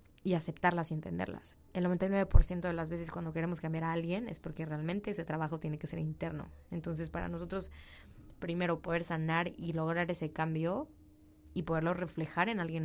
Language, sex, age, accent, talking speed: Spanish, female, 20-39, Mexican, 175 wpm